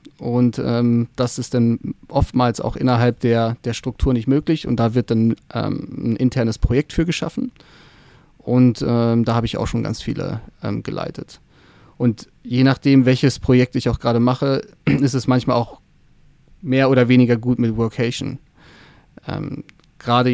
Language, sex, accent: German, male, German